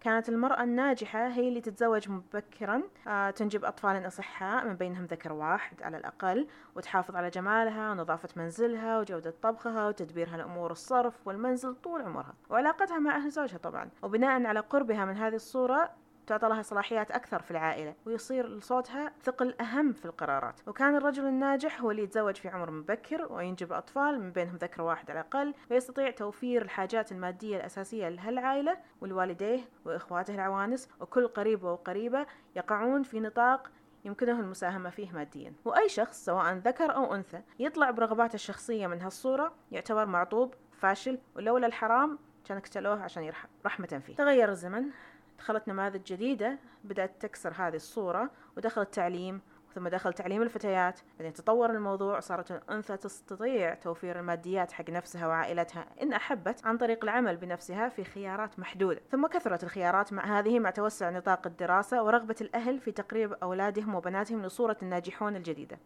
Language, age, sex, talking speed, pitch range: Arabic, 30-49, female, 150 wpm, 185-245 Hz